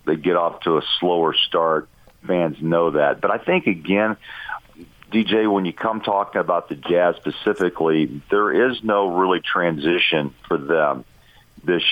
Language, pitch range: English, 80-95 Hz